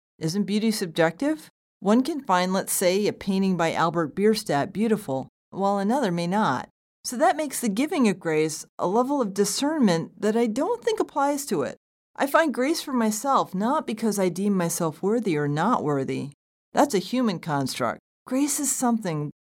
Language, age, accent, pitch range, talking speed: English, 40-59, American, 185-250 Hz, 175 wpm